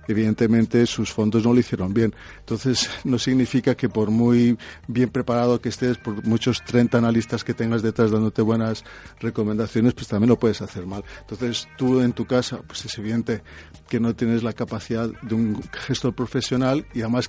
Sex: male